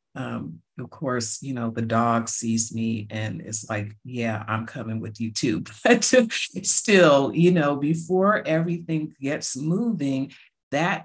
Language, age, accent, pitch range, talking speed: English, 50-69, American, 120-155 Hz, 145 wpm